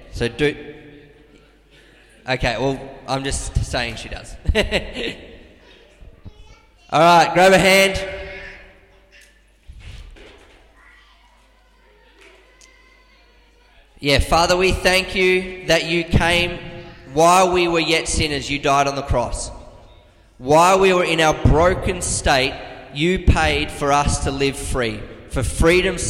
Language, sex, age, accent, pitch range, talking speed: English, male, 20-39, Australian, 130-170 Hz, 110 wpm